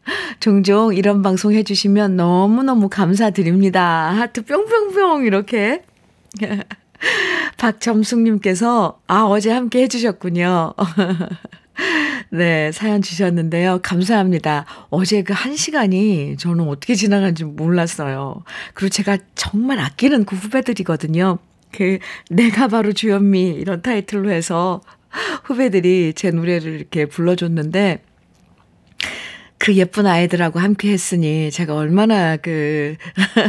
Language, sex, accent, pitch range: Korean, female, native, 175-230 Hz